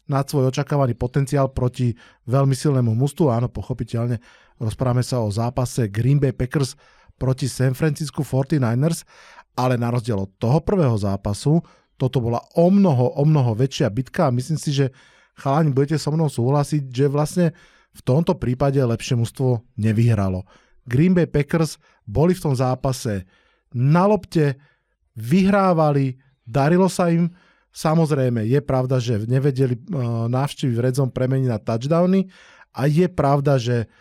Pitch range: 125-150 Hz